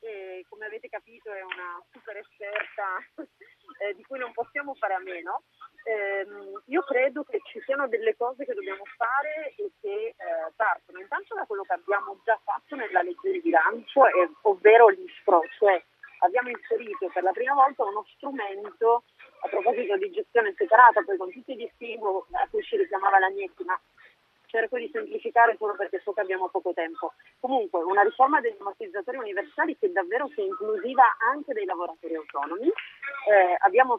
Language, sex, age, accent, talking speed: Italian, female, 30-49, native, 170 wpm